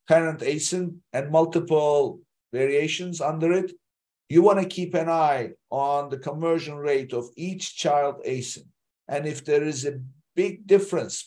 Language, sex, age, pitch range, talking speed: English, male, 50-69, 145-180 Hz, 150 wpm